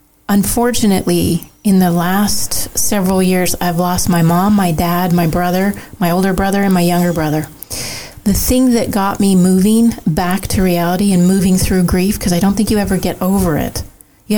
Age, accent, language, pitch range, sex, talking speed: 30-49, American, English, 180-205 Hz, female, 185 wpm